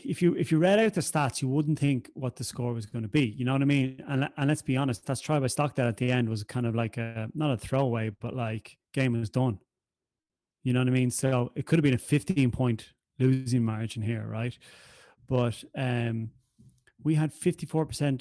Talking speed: 235 wpm